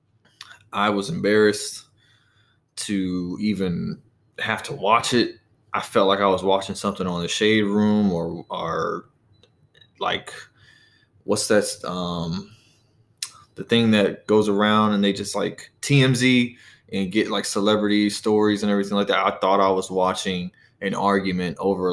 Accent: American